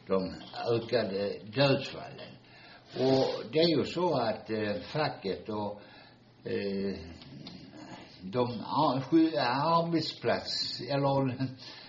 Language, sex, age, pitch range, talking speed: Swedish, male, 60-79, 95-130 Hz, 80 wpm